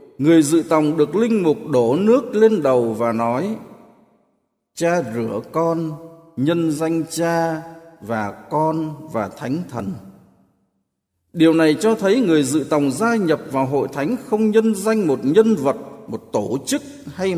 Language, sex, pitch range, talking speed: Vietnamese, male, 125-190 Hz, 155 wpm